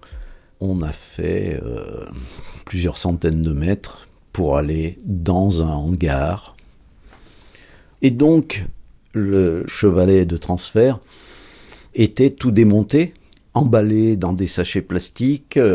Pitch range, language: 80-110 Hz, French